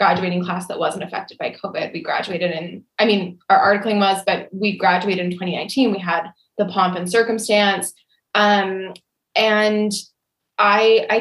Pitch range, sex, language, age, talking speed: 190-240 Hz, female, English, 20-39, 160 wpm